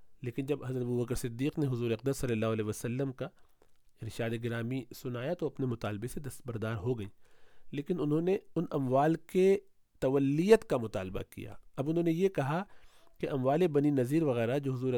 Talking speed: 185 wpm